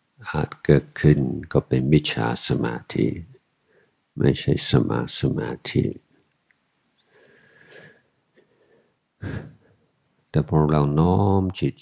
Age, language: 50-69, Thai